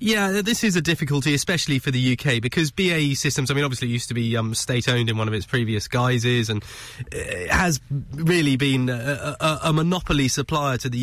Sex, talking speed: male, 200 wpm